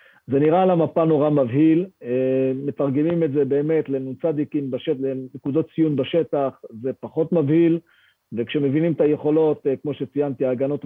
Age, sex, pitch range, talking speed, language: 40-59, male, 130-160 Hz, 125 wpm, Hebrew